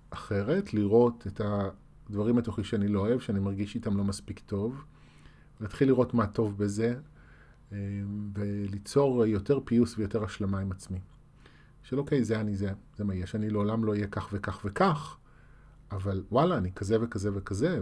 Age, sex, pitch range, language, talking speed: 30-49, male, 100-140 Hz, Hebrew, 160 wpm